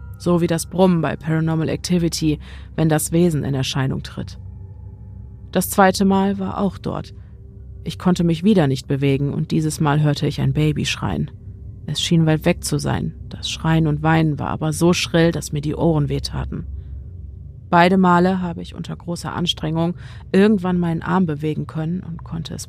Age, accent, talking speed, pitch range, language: 30-49, German, 175 wpm, 120-175 Hz, German